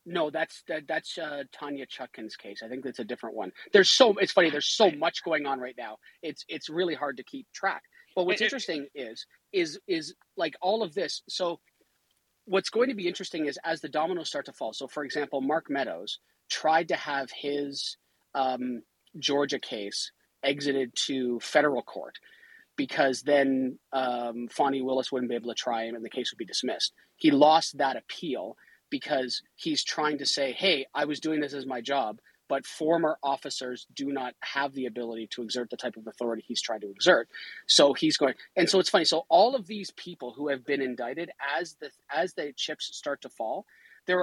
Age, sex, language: 30-49, male, English